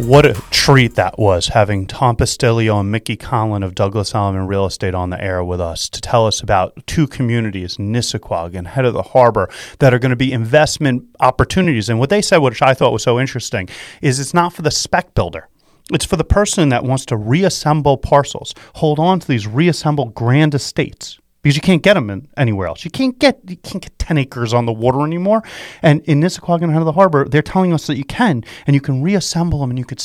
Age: 30-49